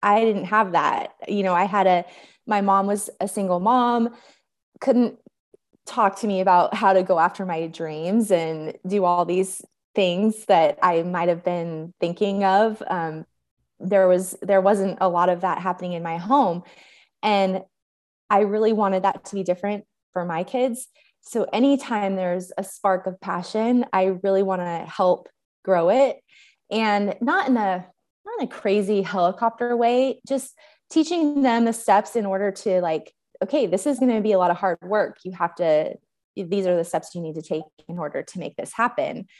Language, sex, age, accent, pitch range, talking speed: English, female, 20-39, American, 180-225 Hz, 185 wpm